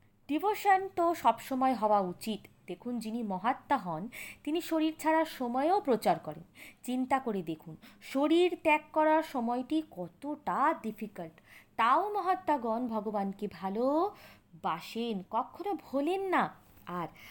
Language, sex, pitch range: Bengali, female, 205-300 Hz